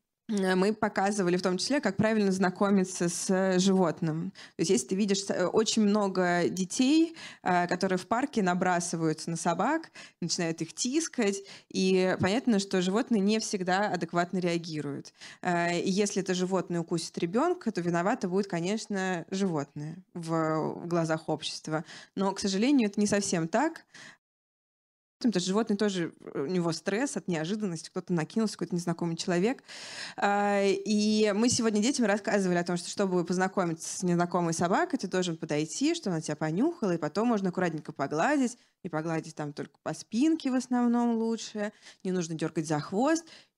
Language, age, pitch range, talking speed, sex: Russian, 20-39, 175-215 Hz, 145 wpm, female